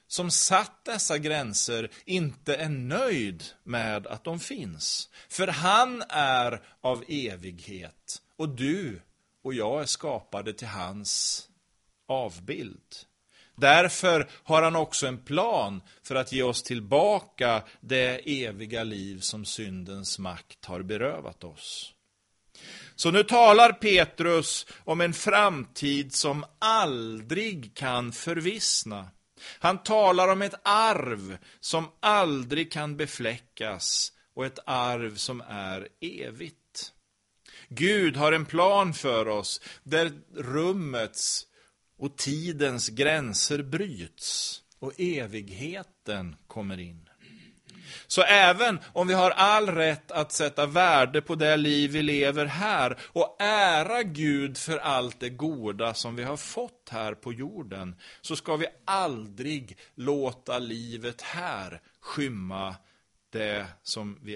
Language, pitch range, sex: Swedish, 110-165 Hz, male